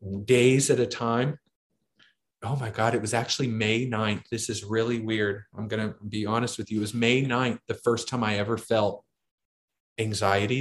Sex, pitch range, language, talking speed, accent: male, 105-125 Hz, English, 190 wpm, American